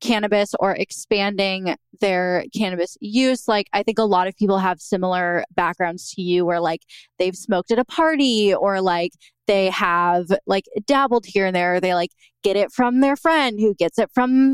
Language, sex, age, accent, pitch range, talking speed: English, female, 20-39, American, 175-215 Hz, 185 wpm